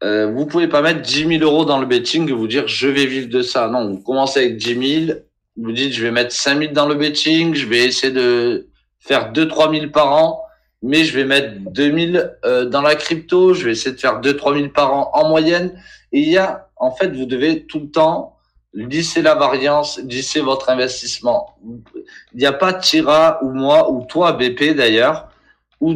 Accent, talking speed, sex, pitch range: French, 225 wpm, male, 130-160 Hz